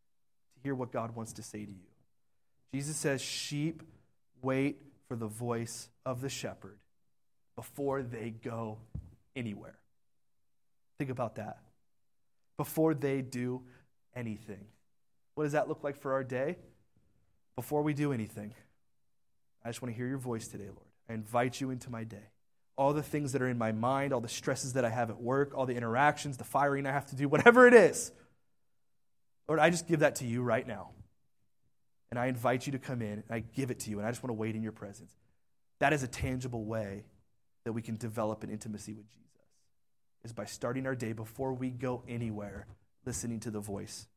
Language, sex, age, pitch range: English, male, 30-49, 110-140 Hz